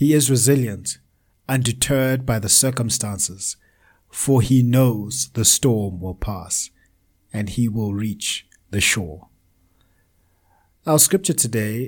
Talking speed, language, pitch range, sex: 115 wpm, English, 90-125 Hz, male